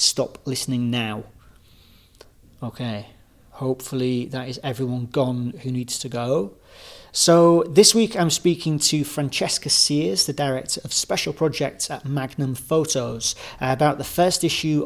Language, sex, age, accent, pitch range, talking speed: English, male, 40-59, British, 130-150 Hz, 135 wpm